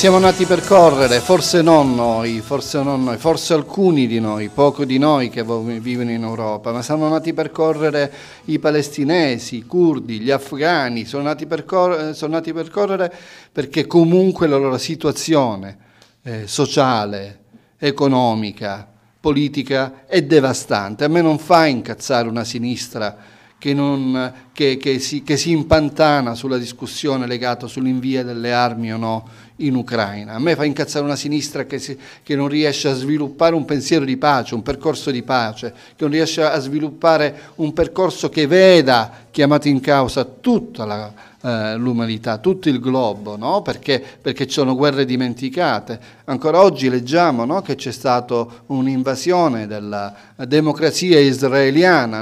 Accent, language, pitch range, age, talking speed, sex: native, Italian, 120-155 Hz, 40-59, 145 wpm, male